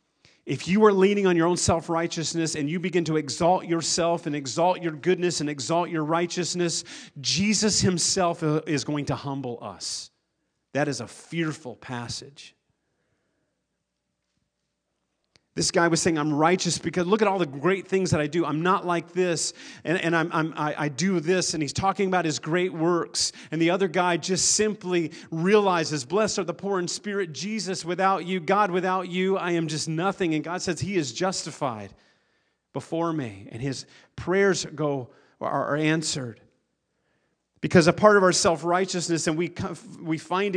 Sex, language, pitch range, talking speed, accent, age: male, English, 145-185 Hz, 175 wpm, American, 40-59